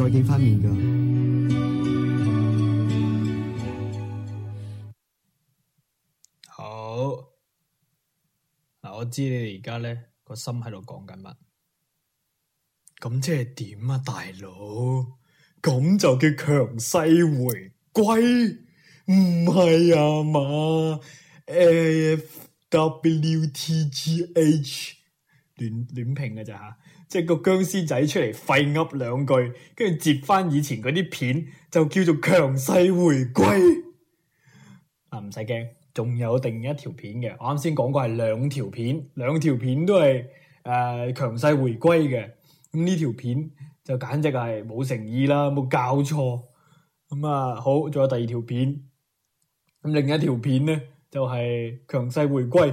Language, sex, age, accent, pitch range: Chinese, male, 20-39, native, 120-155 Hz